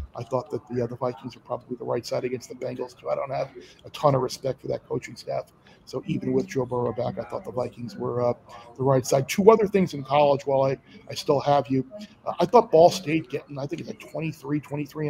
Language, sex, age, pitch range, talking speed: English, male, 40-59, 140-170 Hz, 260 wpm